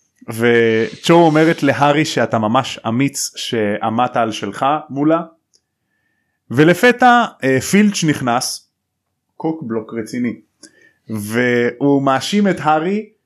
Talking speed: 90 wpm